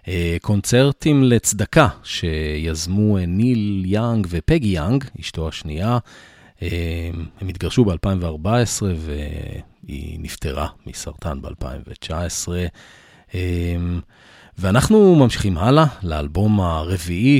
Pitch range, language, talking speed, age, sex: 85-115 Hz, Hebrew, 70 wpm, 30-49, male